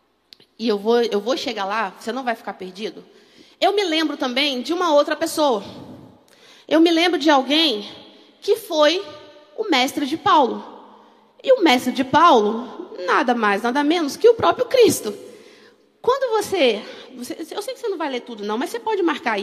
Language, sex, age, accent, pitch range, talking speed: Portuguese, female, 40-59, Brazilian, 235-360 Hz, 180 wpm